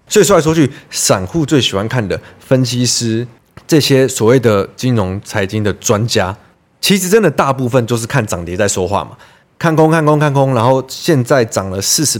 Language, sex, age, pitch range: Chinese, male, 20-39, 105-145 Hz